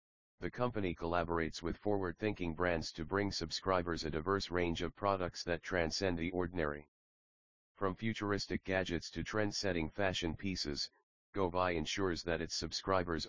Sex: male